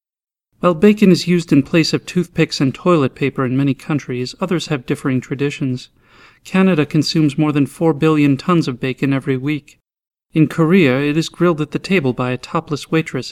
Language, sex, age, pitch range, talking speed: English, male, 40-59, 135-165 Hz, 185 wpm